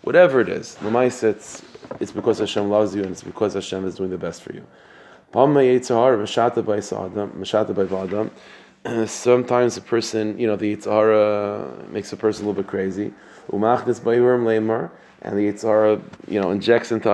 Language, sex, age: English, male, 20-39